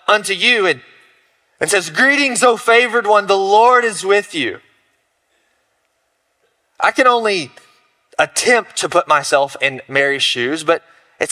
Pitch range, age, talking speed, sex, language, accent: 150-210 Hz, 30-49, 140 wpm, male, English, American